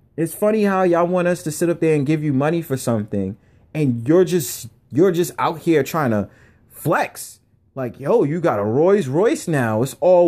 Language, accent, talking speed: English, American, 210 wpm